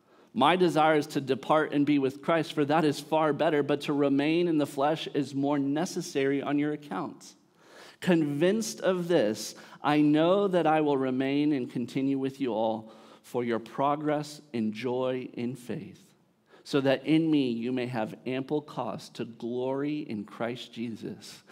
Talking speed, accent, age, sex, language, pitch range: 170 wpm, American, 40-59, male, English, 125-160 Hz